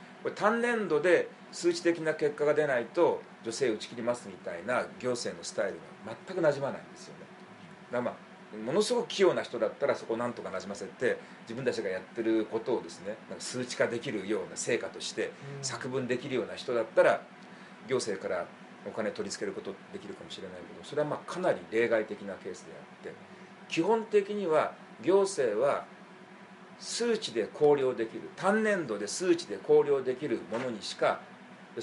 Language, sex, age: Japanese, male, 40-59